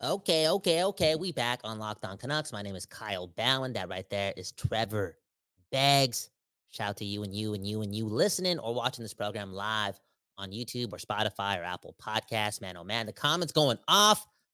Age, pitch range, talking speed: 30-49, 105-145 Hz, 205 wpm